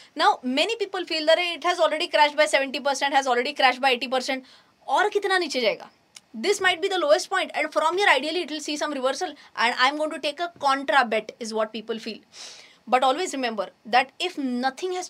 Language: English